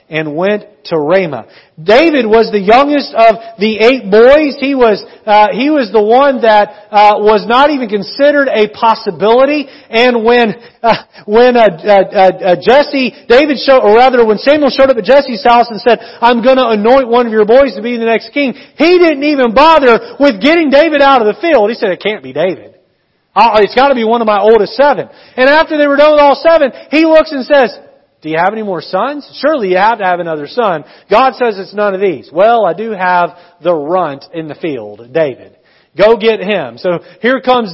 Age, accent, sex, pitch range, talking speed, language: 40-59, American, male, 185-260 Hz, 215 wpm, English